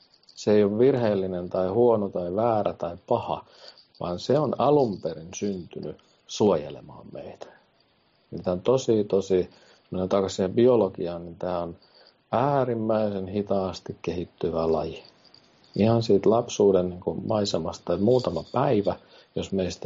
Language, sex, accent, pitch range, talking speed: Finnish, male, native, 90-115 Hz, 120 wpm